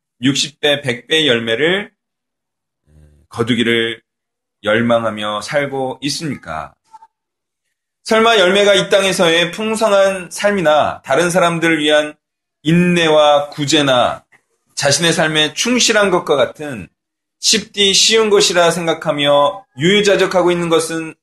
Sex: male